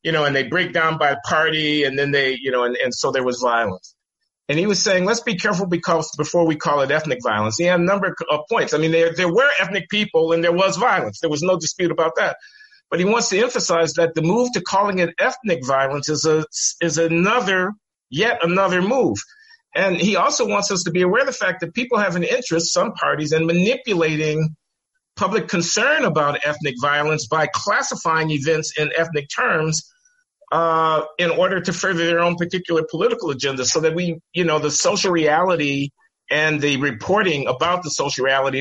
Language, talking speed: English, 205 wpm